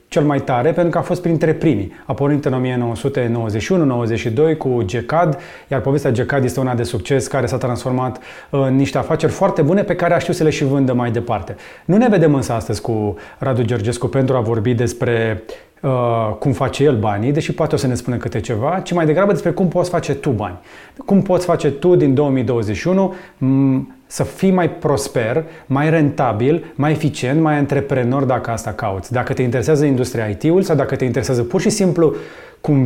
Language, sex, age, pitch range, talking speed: Romanian, male, 30-49, 120-160 Hz, 190 wpm